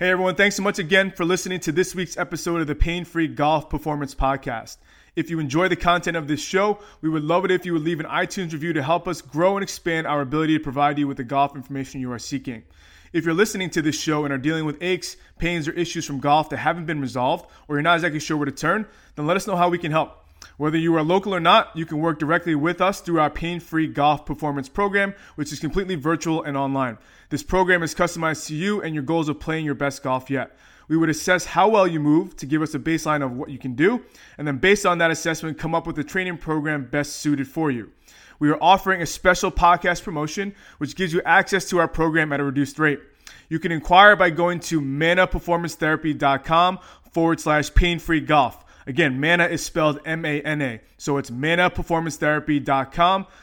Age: 20-39